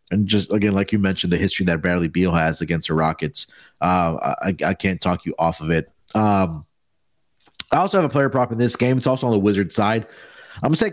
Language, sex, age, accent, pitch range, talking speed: English, male, 30-49, American, 95-115 Hz, 240 wpm